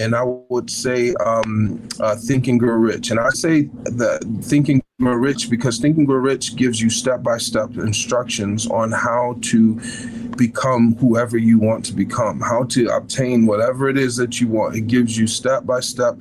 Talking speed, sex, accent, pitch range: 170 wpm, male, American, 115-140 Hz